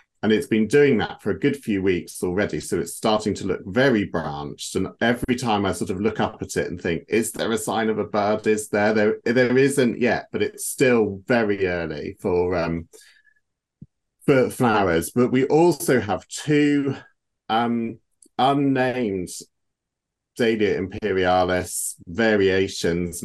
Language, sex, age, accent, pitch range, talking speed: English, male, 40-59, British, 90-120 Hz, 160 wpm